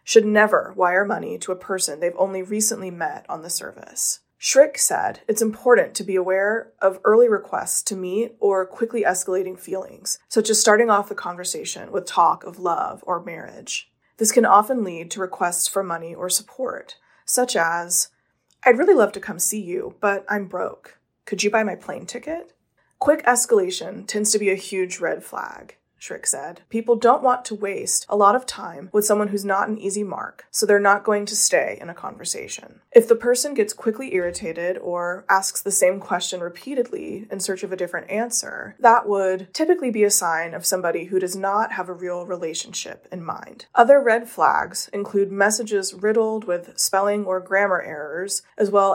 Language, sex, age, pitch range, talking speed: English, female, 20-39, 190-235 Hz, 190 wpm